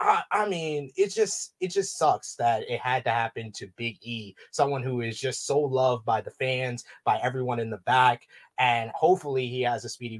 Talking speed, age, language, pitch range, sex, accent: 200 wpm, 20-39, English, 120-165 Hz, male, American